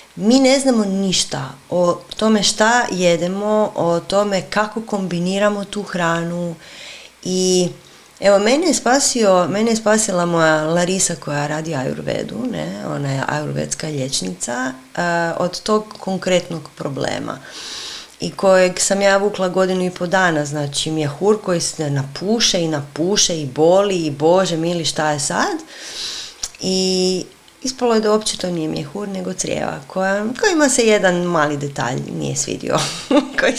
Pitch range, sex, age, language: 165-215 Hz, female, 30-49, Croatian